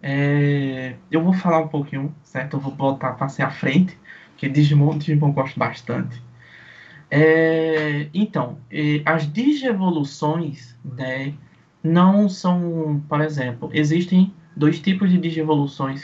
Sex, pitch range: male, 140-185 Hz